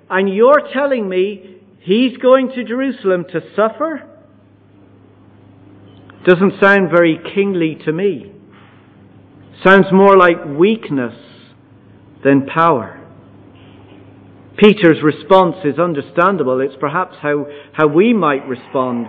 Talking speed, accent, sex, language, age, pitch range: 105 wpm, British, male, English, 50-69, 125-210 Hz